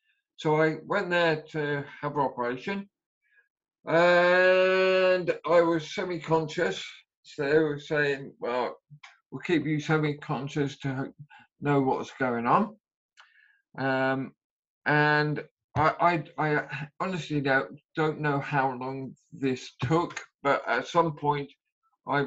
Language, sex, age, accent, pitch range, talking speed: English, male, 50-69, British, 135-170 Hz, 115 wpm